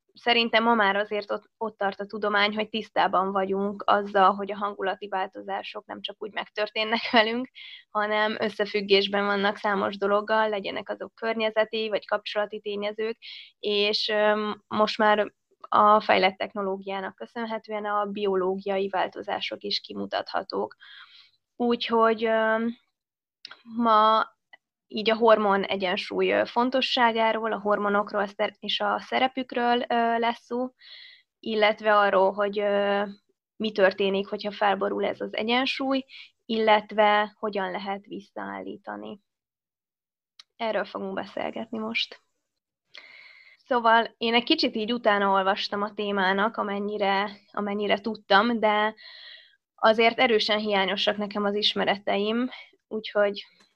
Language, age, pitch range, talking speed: Hungarian, 20-39, 200-225 Hz, 105 wpm